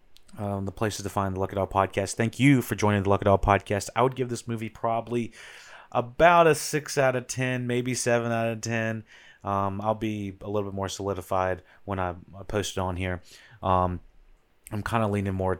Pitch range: 90-105 Hz